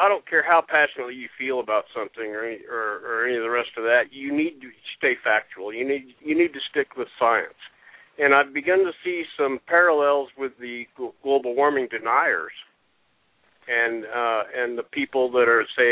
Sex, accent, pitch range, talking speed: male, American, 125-170 Hz, 195 wpm